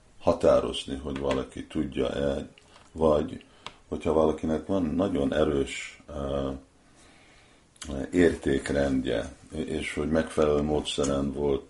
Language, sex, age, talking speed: Hungarian, male, 50-69, 85 wpm